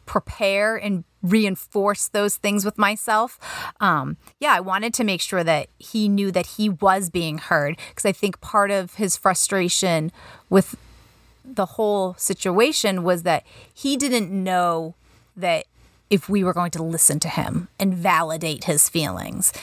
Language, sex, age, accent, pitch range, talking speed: English, female, 30-49, American, 180-220 Hz, 155 wpm